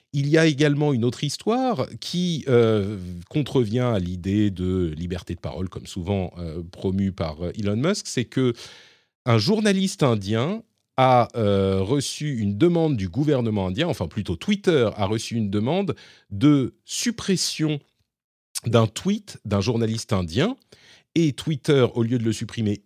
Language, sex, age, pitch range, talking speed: French, male, 40-59, 100-140 Hz, 145 wpm